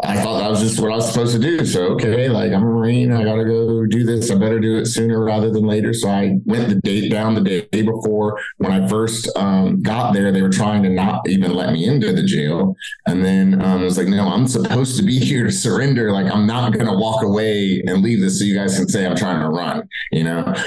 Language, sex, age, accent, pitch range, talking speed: English, male, 30-49, American, 95-115 Hz, 265 wpm